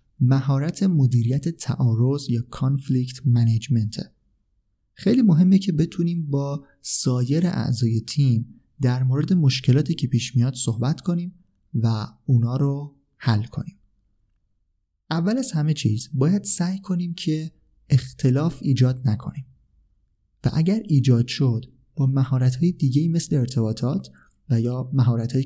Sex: male